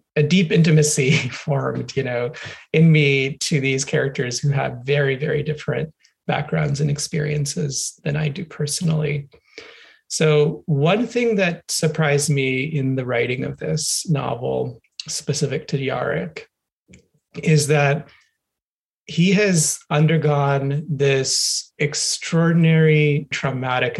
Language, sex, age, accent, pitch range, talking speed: English, male, 30-49, American, 135-155 Hz, 115 wpm